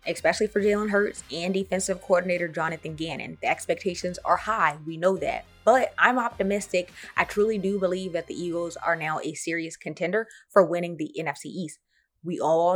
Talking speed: 180 wpm